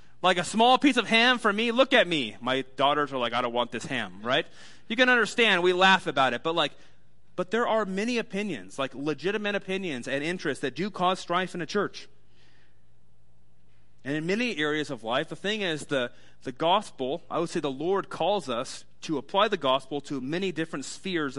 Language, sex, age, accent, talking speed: English, male, 30-49, American, 210 wpm